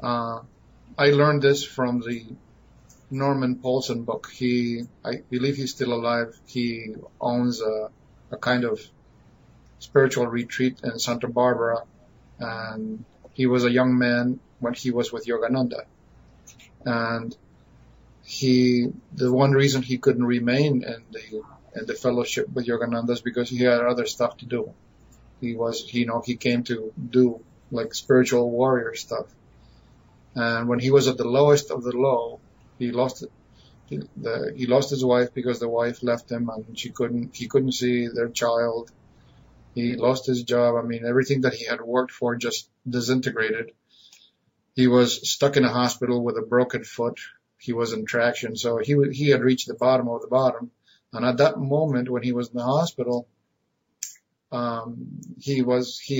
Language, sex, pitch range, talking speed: English, male, 120-130 Hz, 165 wpm